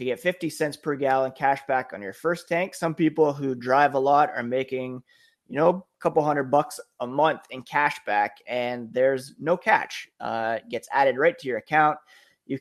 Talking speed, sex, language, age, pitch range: 210 wpm, male, English, 20-39, 125-155 Hz